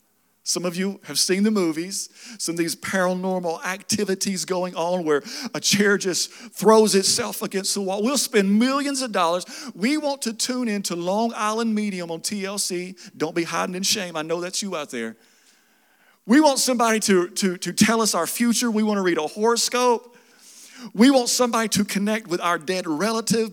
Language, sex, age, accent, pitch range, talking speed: English, male, 40-59, American, 185-240 Hz, 190 wpm